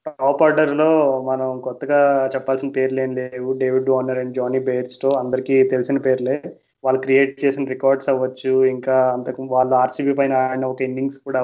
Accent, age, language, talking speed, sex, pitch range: native, 20-39, Telugu, 155 wpm, male, 130-145 Hz